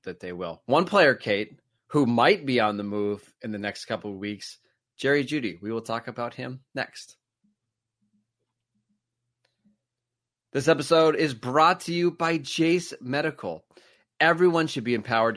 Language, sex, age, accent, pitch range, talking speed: English, male, 30-49, American, 115-140 Hz, 150 wpm